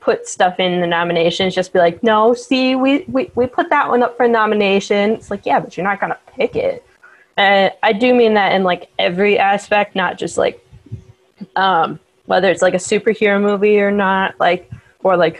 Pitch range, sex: 180-215 Hz, female